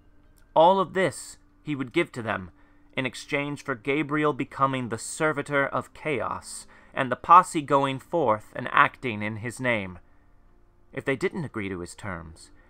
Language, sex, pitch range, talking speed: English, male, 105-145 Hz, 160 wpm